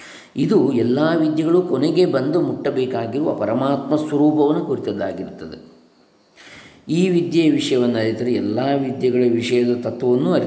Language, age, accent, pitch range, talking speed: English, 20-39, Indian, 120-160 Hz, 105 wpm